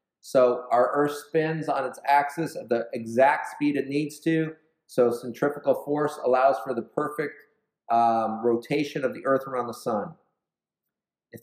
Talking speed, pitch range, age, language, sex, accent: 160 wpm, 120-155 Hz, 40-59, English, male, American